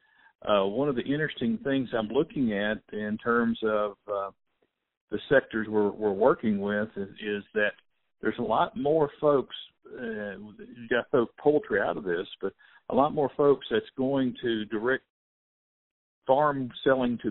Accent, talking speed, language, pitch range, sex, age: American, 165 wpm, English, 105-135 Hz, male, 50-69